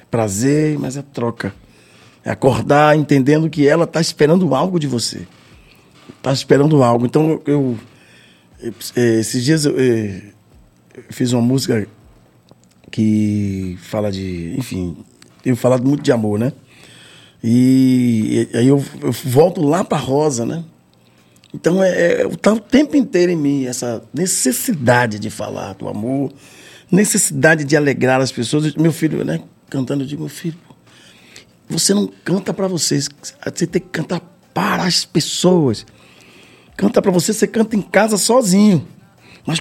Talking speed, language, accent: 145 wpm, Portuguese, Brazilian